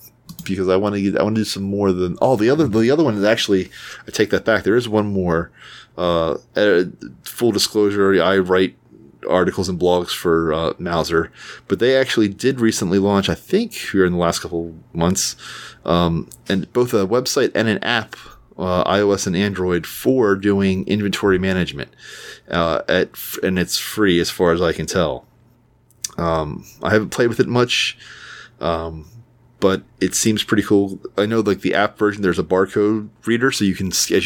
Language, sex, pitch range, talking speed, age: English, male, 85-105 Hz, 185 wpm, 30-49